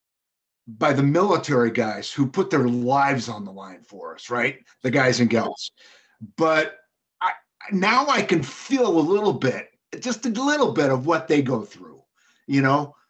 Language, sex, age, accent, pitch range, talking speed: English, male, 50-69, American, 135-190 Hz, 170 wpm